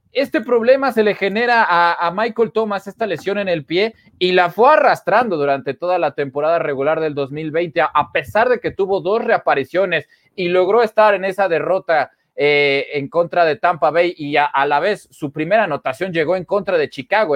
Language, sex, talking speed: Spanish, male, 195 wpm